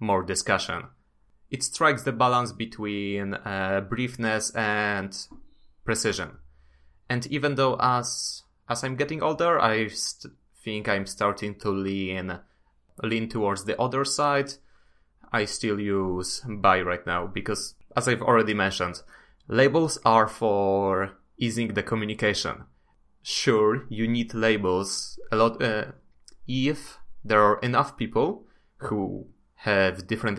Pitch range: 95-120 Hz